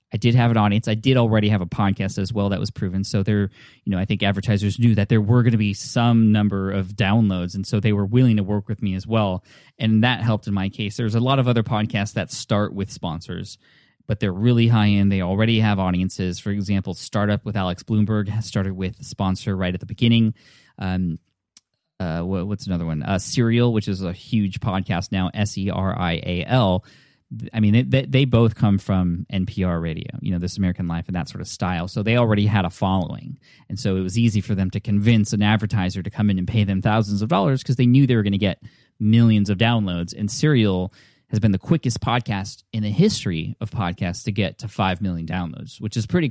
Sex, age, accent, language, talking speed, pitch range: male, 20-39, American, English, 235 wpm, 95-120 Hz